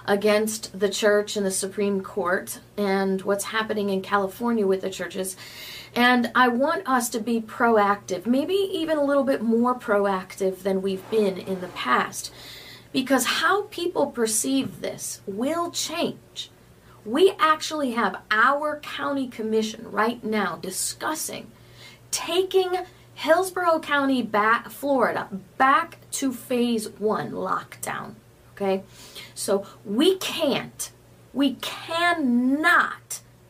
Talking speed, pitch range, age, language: 120 wpm, 195-265 Hz, 40-59, English